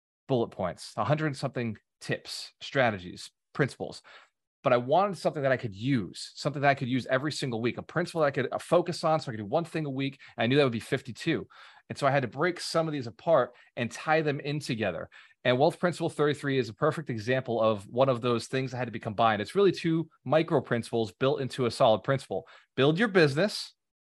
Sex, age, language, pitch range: male, 30-49, English, 120-160 Hz